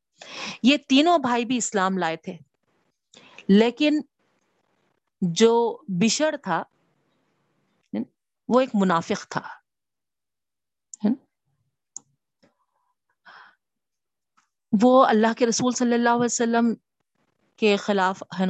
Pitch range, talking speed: 180-235 Hz, 80 wpm